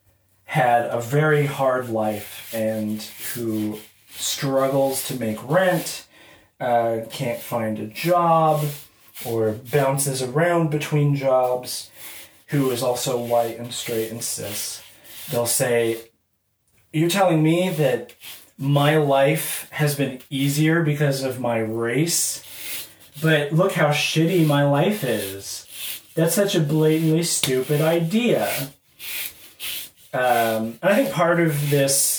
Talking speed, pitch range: 120 wpm, 115-150 Hz